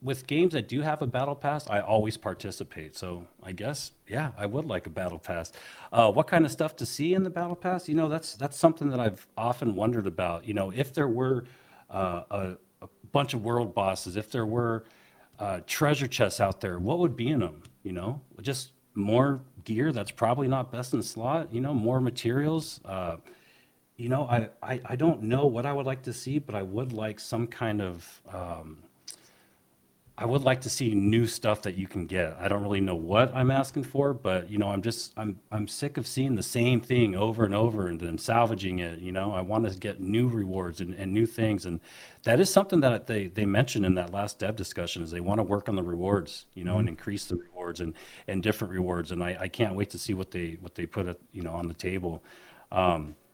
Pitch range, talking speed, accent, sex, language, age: 95-130 Hz, 230 wpm, American, male, English, 40-59